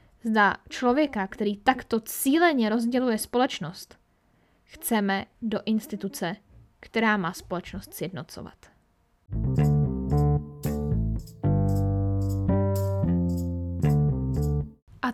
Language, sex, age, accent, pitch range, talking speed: Czech, female, 20-39, native, 195-260 Hz, 60 wpm